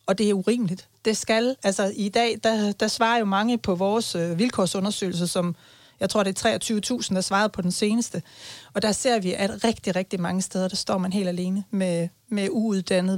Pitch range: 180-210 Hz